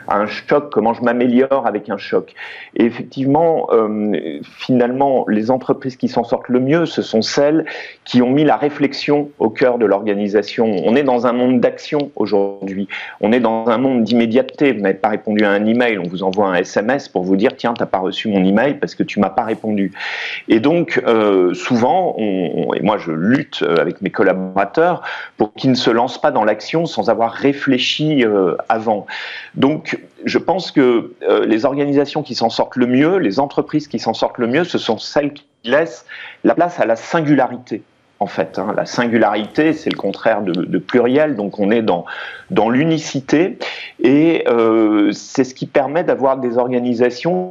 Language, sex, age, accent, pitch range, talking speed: French, male, 40-59, French, 110-145 Hz, 190 wpm